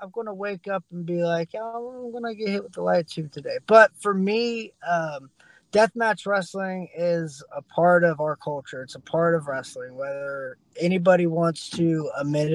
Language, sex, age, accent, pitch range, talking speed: English, male, 20-39, American, 155-180 Hz, 195 wpm